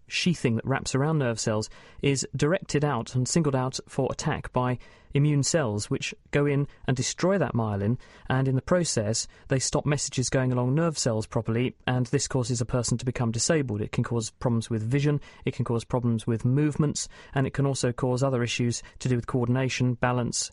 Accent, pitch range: British, 120-150 Hz